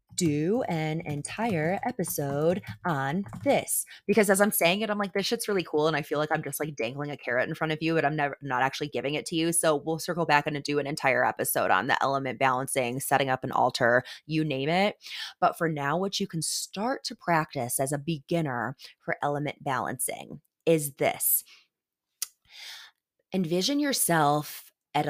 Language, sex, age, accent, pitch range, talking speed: English, female, 20-39, American, 140-165 Hz, 190 wpm